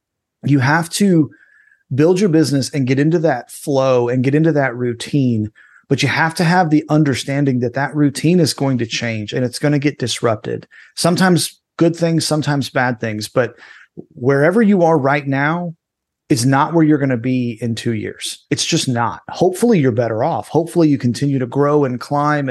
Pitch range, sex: 125-160 Hz, male